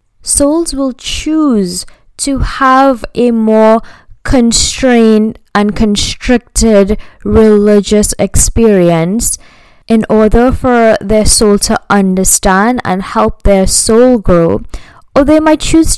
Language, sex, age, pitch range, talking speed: English, female, 10-29, 195-235 Hz, 105 wpm